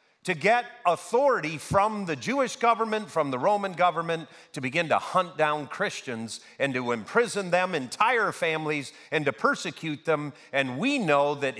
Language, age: English, 50-69